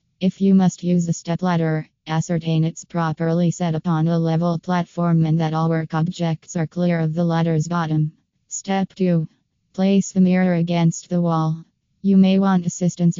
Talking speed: 170 wpm